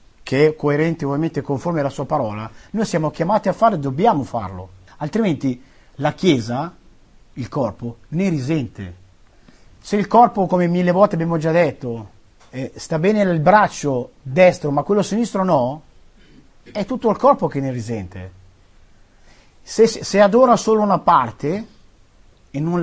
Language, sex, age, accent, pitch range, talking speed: Italian, male, 50-69, native, 120-175 Hz, 150 wpm